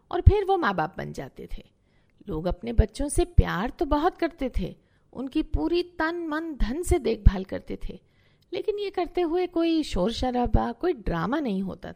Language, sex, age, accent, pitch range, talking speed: Hindi, female, 50-69, native, 200-335 Hz, 185 wpm